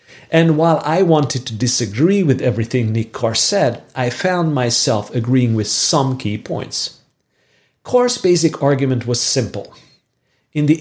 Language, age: English, 40-59